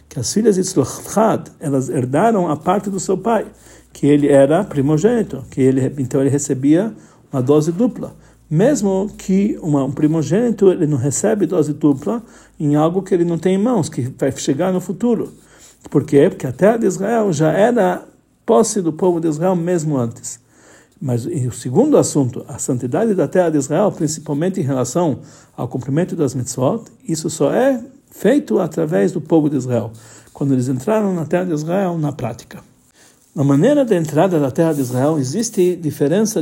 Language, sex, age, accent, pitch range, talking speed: Portuguese, male, 60-79, Brazilian, 140-195 Hz, 175 wpm